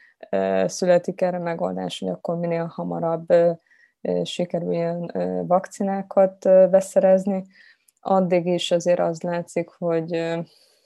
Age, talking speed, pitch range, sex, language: 20-39, 100 wpm, 160-180 Hz, female, Hungarian